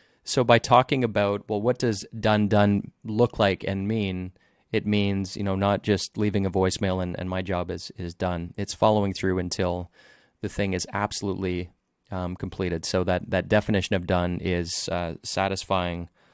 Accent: American